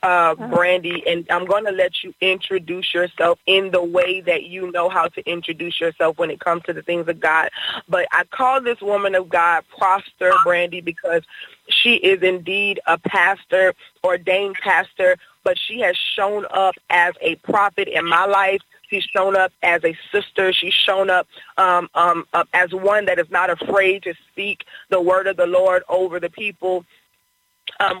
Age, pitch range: 20-39, 175-200 Hz